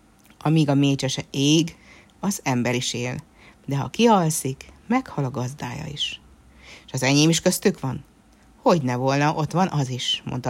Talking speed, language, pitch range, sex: 160 wpm, Hungarian, 135-190 Hz, female